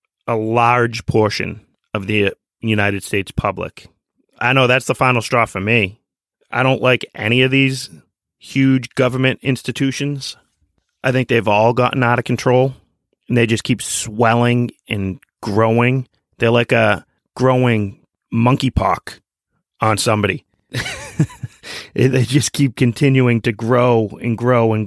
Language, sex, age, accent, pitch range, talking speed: English, male, 30-49, American, 110-130 Hz, 135 wpm